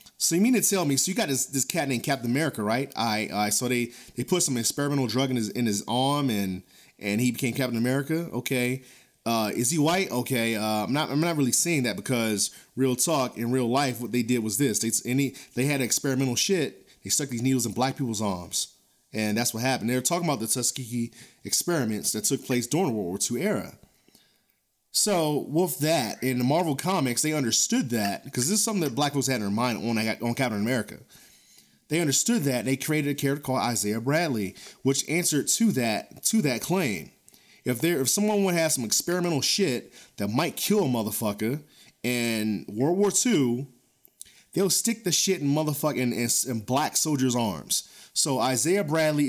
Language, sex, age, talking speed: English, male, 30-49, 205 wpm